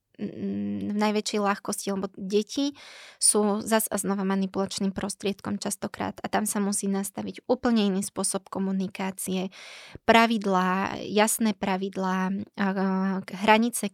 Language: Slovak